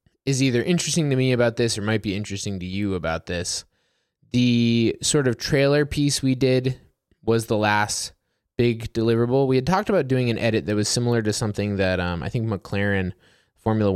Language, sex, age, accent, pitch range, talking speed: English, male, 20-39, American, 100-125 Hz, 195 wpm